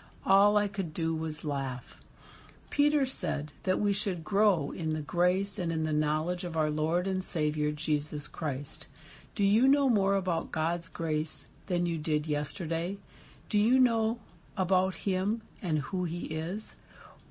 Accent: American